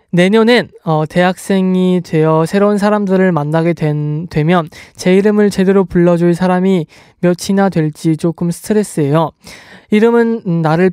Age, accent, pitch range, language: 20-39, native, 160-200 Hz, Korean